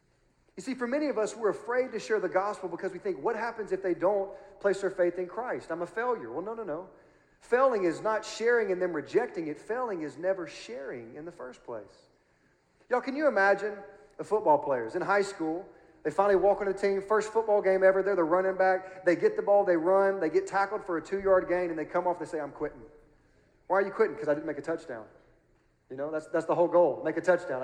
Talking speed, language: 245 wpm, English